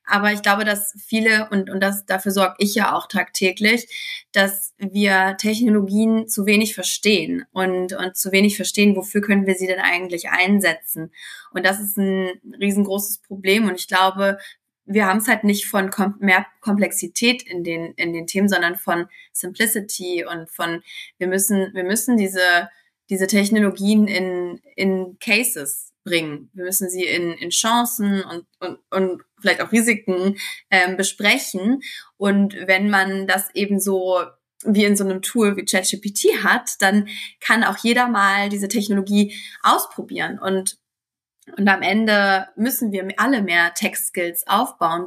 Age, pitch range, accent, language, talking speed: 20-39, 185-215 Hz, German, German, 155 wpm